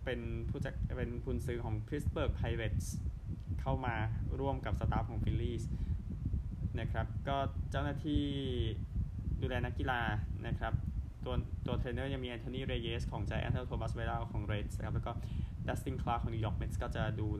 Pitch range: 100-115 Hz